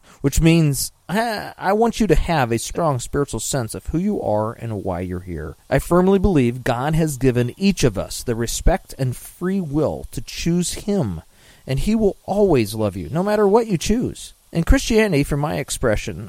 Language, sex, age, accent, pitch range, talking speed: English, male, 40-59, American, 105-160 Hz, 190 wpm